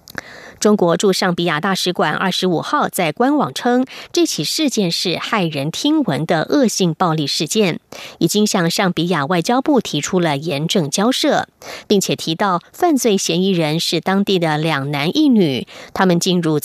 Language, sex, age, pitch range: German, female, 20-39, 170-235 Hz